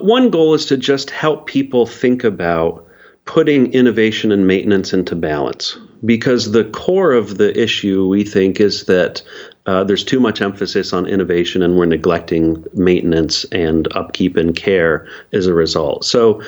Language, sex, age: English, male, 40-59